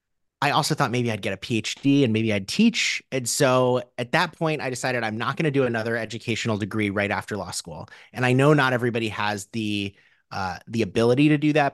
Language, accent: English, American